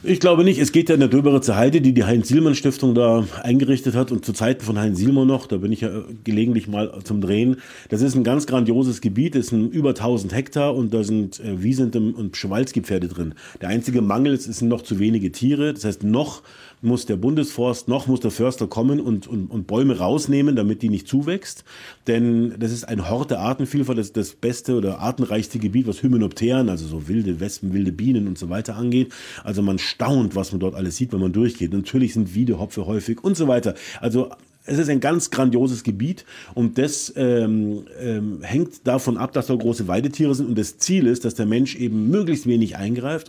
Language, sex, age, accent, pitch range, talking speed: German, male, 40-59, German, 105-130 Hz, 210 wpm